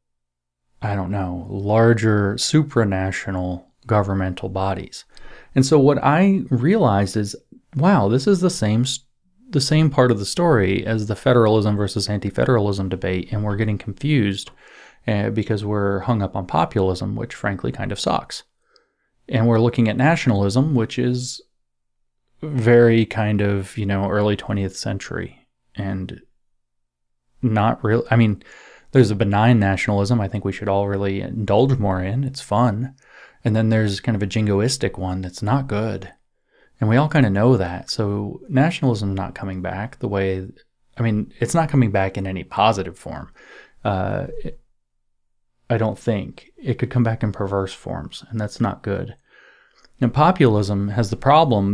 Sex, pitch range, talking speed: male, 95-125 Hz, 160 wpm